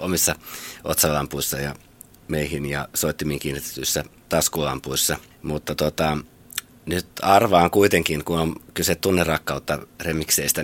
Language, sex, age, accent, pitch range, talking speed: Finnish, male, 30-49, native, 75-85 Hz, 100 wpm